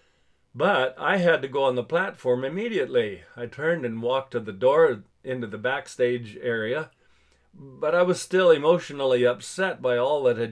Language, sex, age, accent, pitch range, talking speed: English, male, 50-69, American, 120-170 Hz, 170 wpm